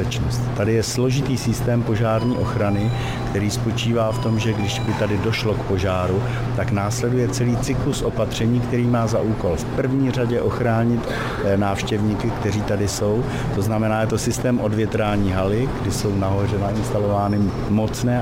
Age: 50-69